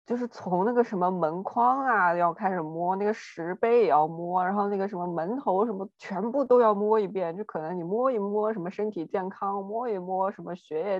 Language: Chinese